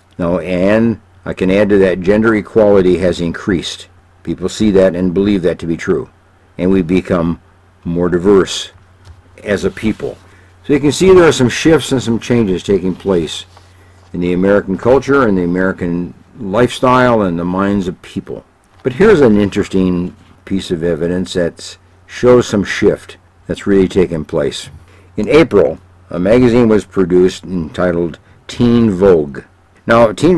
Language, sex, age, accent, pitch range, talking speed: English, male, 60-79, American, 90-105 Hz, 160 wpm